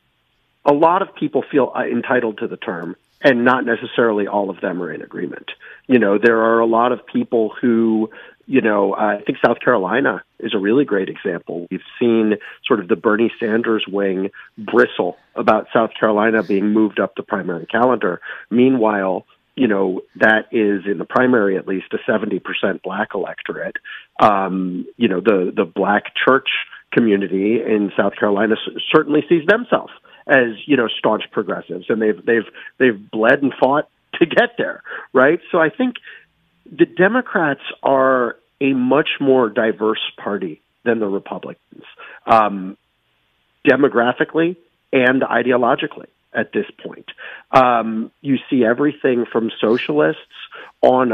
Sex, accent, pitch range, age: male, American, 105-135 Hz, 40-59